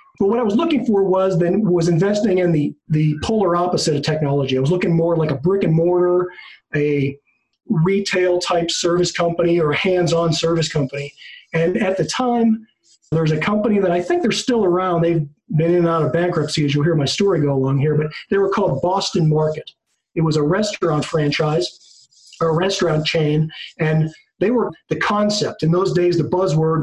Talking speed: 190 wpm